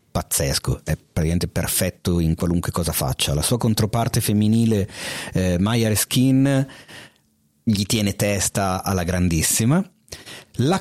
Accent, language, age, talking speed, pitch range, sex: native, Italian, 30-49, 115 wpm, 90-130 Hz, male